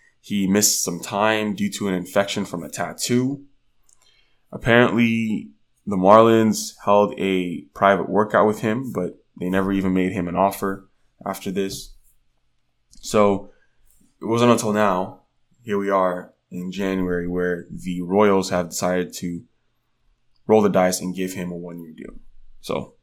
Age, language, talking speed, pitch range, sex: 20-39, English, 145 wpm, 90-115 Hz, male